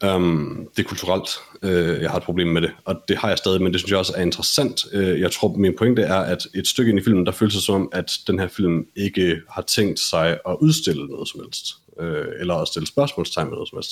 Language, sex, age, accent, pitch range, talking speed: Danish, male, 30-49, native, 85-105 Hz, 270 wpm